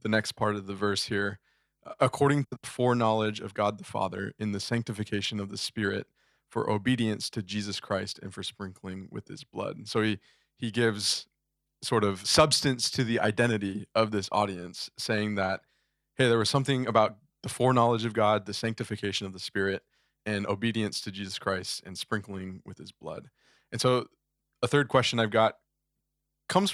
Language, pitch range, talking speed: English, 105-125 Hz, 180 wpm